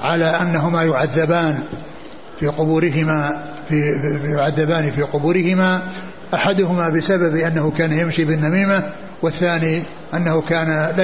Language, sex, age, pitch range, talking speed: Arabic, male, 60-79, 160-180 Hz, 105 wpm